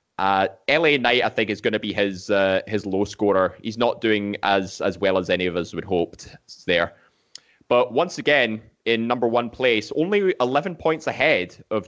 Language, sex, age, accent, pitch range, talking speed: English, male, 20-39, British, 100-125 Hz, 195 wpm